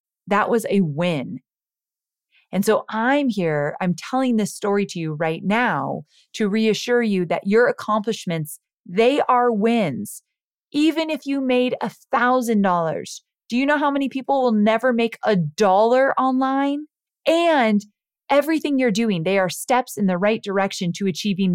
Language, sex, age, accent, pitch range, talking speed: English, female, 30-49, American, 165-225 Hz, 155 wpm